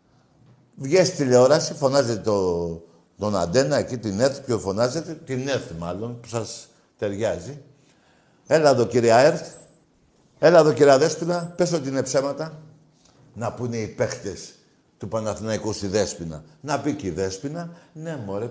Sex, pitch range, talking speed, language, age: male, 110-170 Hz, 135 wpm, Greek, 60-79